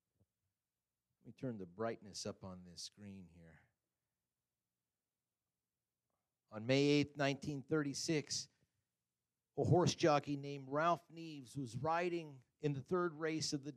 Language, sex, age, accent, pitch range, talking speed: English, male, 50-69, American, 120-155 Hz, 115 wpm